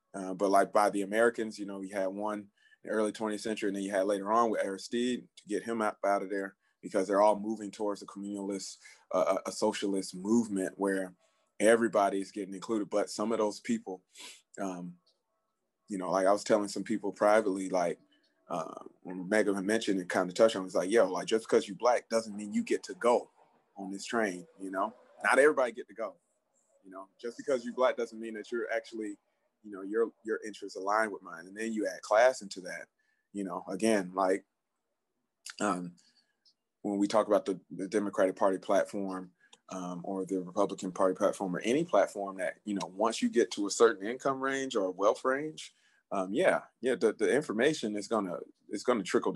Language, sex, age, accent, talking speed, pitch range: English, male, 20-39, American, 210 wpm, 95-110 Hz